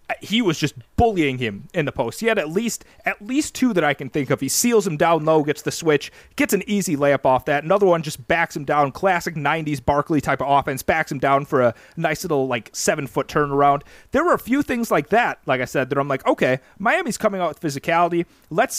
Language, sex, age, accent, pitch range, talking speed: English, male, 30-49, American, 140-210 Hz, 240 wpm